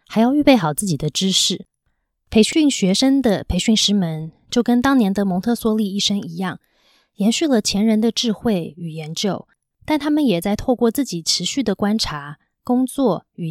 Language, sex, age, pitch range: Chinese, female, 20-39, 180-240 Hz